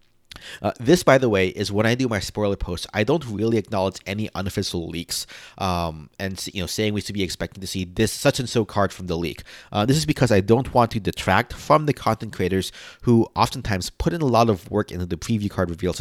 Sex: male